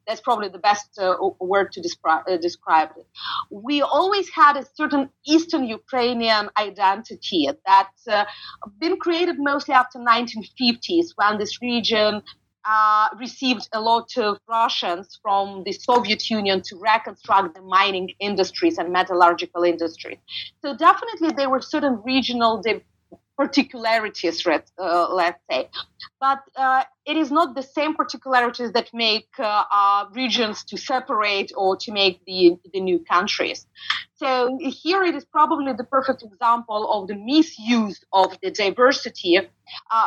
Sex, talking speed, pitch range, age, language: female, 145 wpm, 200-265 Hz, 30-49, English